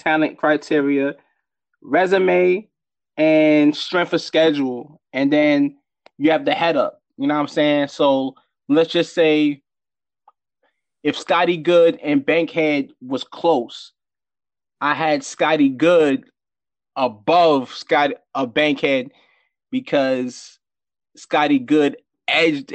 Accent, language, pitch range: American, English, 145-190 Hz